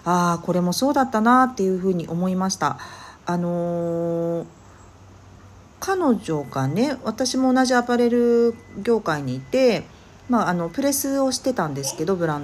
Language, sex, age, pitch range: Japanese, female, 40-59, 155-230 Hz